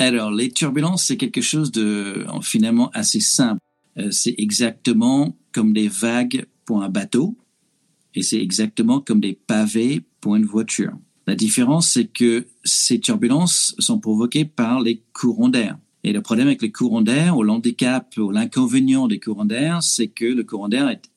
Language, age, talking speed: French, 50-69, 170 wpm